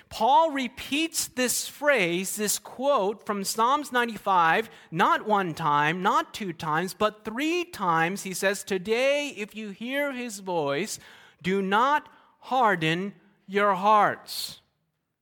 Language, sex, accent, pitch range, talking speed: English, male, American, 145-200 Hz, 120 wpm